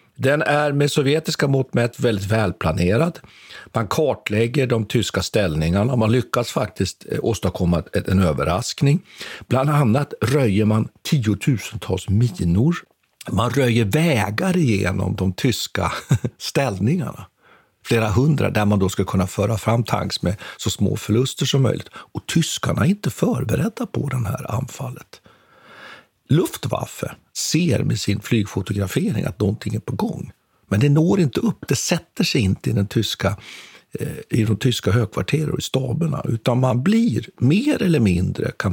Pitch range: 105-145 Hz